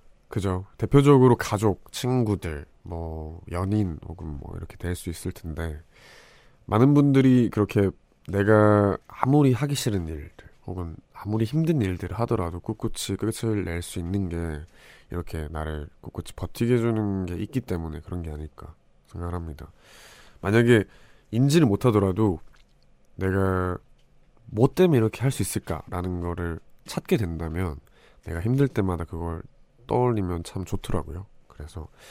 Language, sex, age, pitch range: Korean, male, 20-39, 85-105 Hz